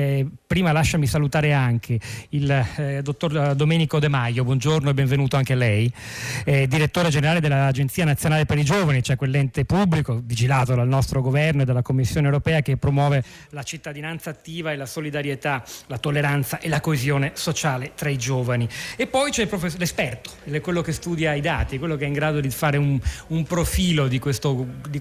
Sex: male